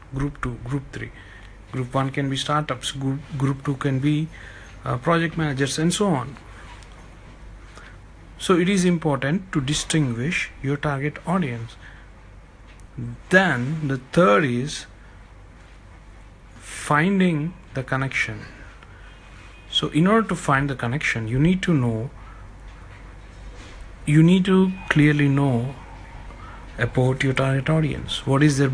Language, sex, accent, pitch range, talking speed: English, male, Indian, 105-150 Hz, 120 wpm